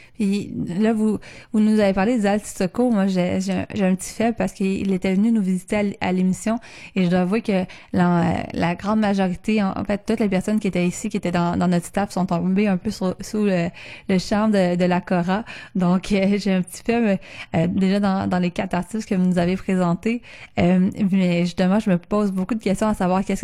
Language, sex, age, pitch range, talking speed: French, female, 20-39, 185-220 Hz, 235 wpm